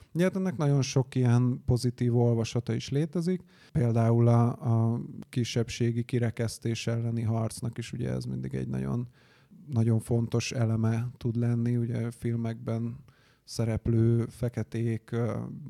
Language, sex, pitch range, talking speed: Hungarian, male, 115-130 Hz, 115 wpm